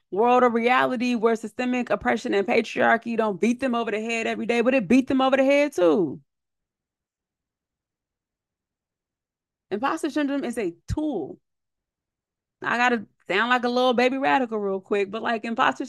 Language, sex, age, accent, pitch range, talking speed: English, female, 30-49, American, 220-270 Hz, 160 wpm